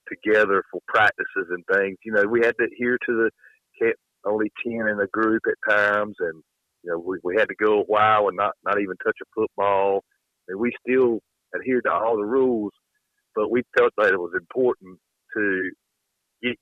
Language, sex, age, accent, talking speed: English, male, 50-69, American, 195 wpm